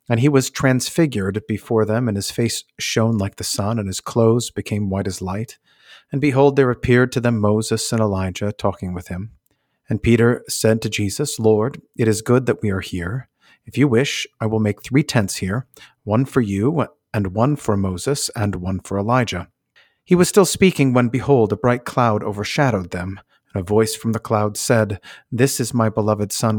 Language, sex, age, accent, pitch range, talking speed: English, male, 50-69, American, 100-125 Hz, 200 wpm